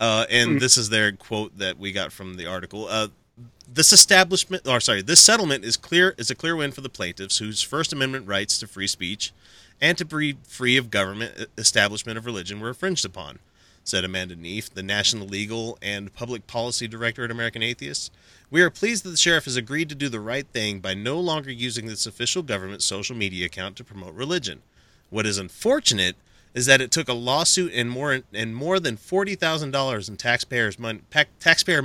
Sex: male